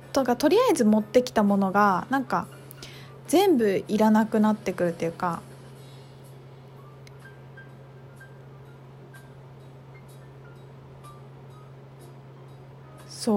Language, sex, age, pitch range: Japanese, female, 20-39, 135-220 Hz